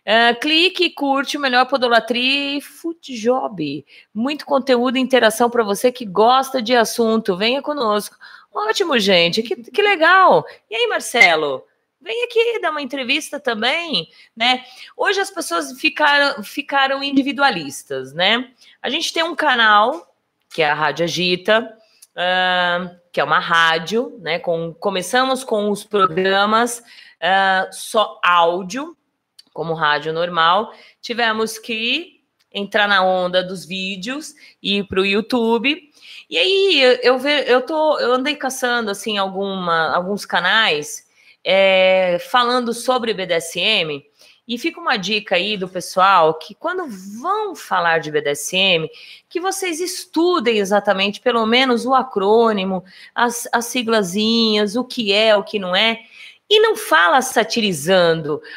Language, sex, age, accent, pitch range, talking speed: Portuguese, female, 30-49, Brazilian, 190-275 Hz, 135 wpm